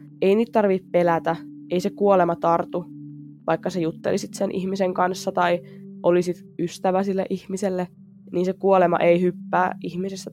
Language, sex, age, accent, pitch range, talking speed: Finnish, female, 20-39, native, 170-205 Hz, 145 wpm